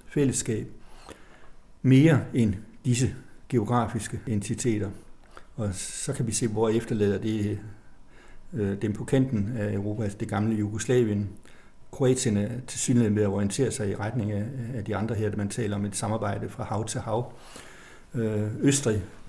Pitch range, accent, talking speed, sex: 105-125 Hz, native, 150 wpm, male